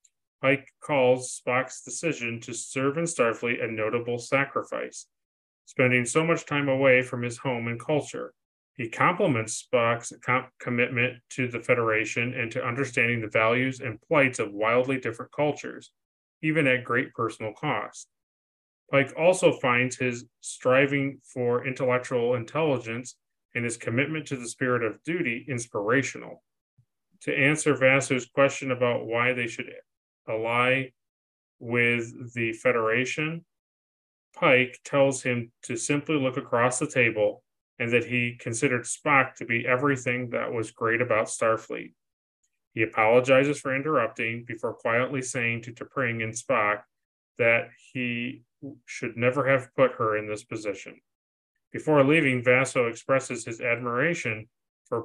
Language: English